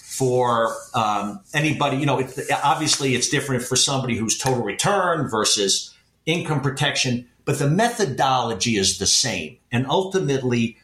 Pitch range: 120-155 Hz